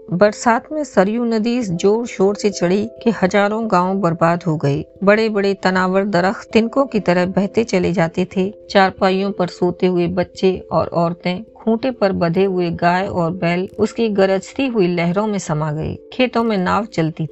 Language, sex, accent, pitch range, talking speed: Hindi, female, native, 180-215 Hz, 175 wpm